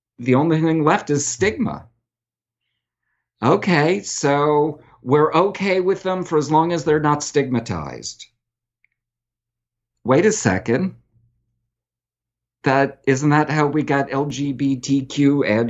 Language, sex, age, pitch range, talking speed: English, male, 50-69, 120-175 Hz, 115 wpm